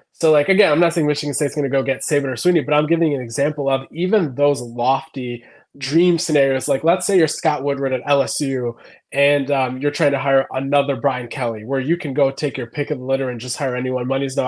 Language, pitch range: English, 125-150 Hz